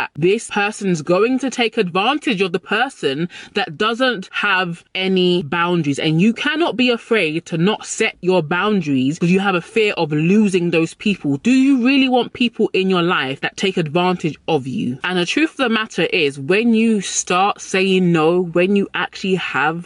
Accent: British